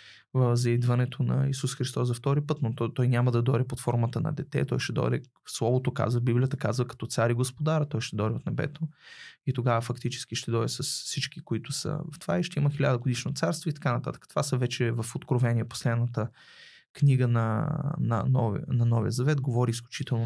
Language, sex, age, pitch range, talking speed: Bulgarian, male, 20-39, 120-140 Hz, 205 wpm